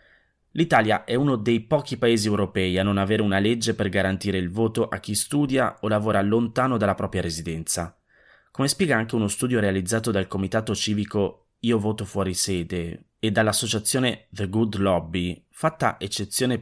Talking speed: 165 wpm